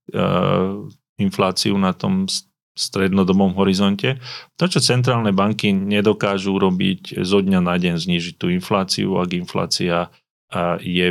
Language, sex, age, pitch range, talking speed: Slovak, male, 30-49, 95-115 Hz, 115 wpm